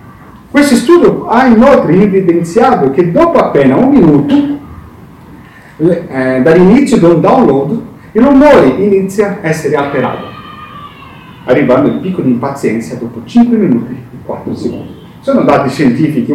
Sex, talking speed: male, 120 wpm